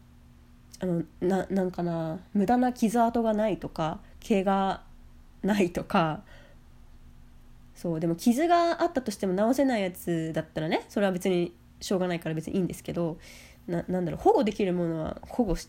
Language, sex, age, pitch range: Japanese, female, 20-39, 165-230 Hz